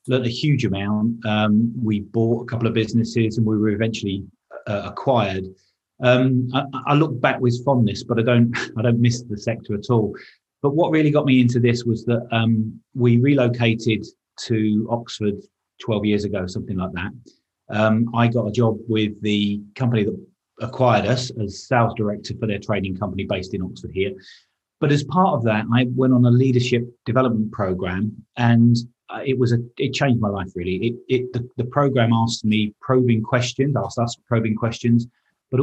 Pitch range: 105-125 Hz